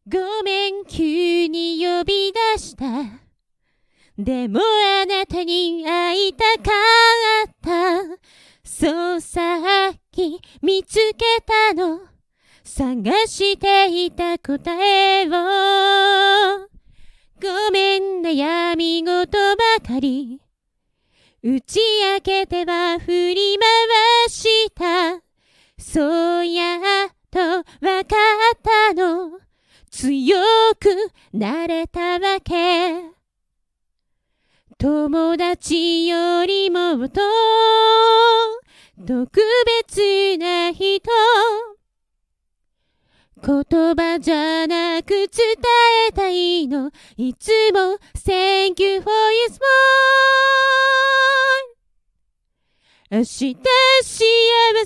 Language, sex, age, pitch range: Japanese, female, 30-49, 335-430 Hz